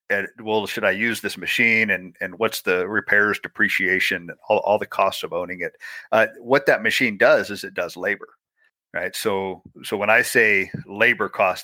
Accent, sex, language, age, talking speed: American, male, English, 50-69, 195 wpm